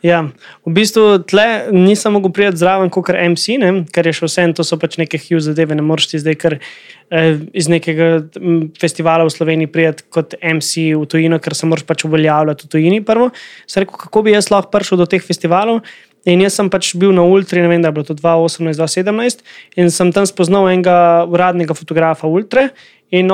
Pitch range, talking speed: 165-200 Hz, 205 wpm